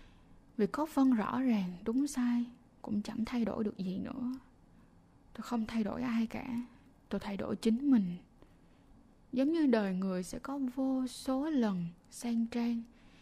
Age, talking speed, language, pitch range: 20-39, 165 wpm, Vietnamese, 195-245 Hz